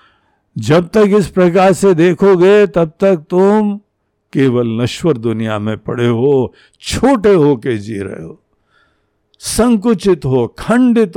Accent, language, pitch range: native, Hindi, 115-185 Hz